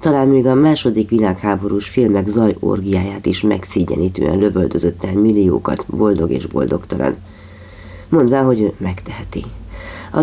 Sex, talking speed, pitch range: female, 105 wpm, 95-115 Hz